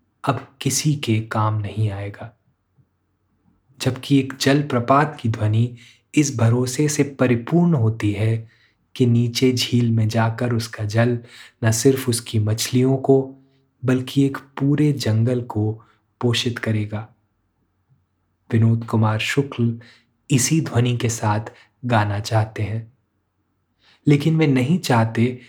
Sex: male